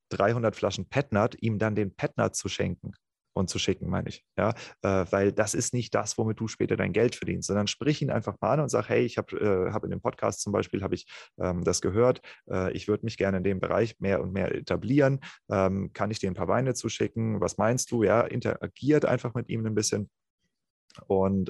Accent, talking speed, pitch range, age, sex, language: German, 225 wpm, 95-115 Hz, 30-49, male, German